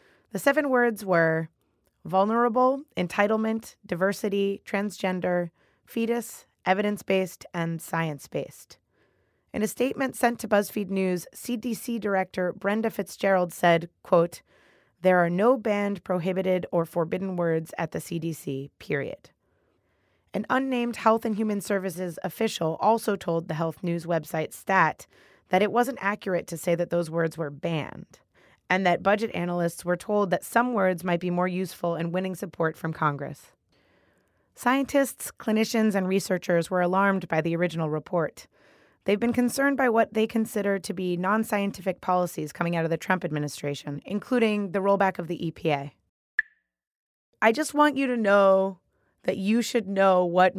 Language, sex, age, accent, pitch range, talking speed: English, female, 20-39, American, 170-220 Hz, 145 wpm